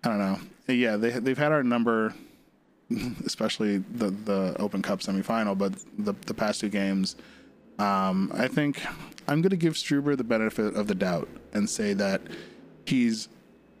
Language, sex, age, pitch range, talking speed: English, male, 20-39, 100-140 Hz, 165 wpm